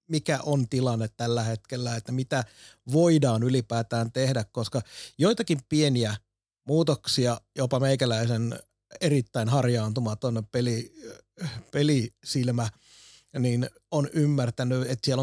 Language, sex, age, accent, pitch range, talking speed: Finnish, male, 30-49, native, 120-140 Hz, 100 wpm